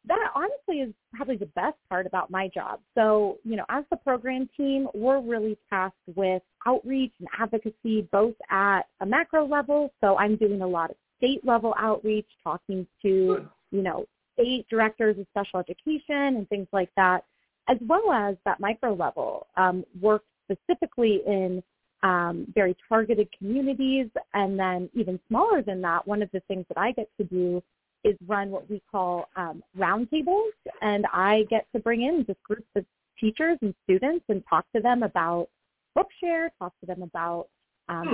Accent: American